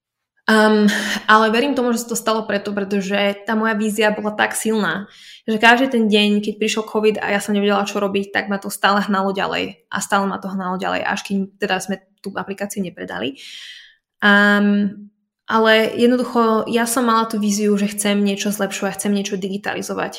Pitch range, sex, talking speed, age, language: 200-225 Hz, female, 185 wpm, 20-39, Slovak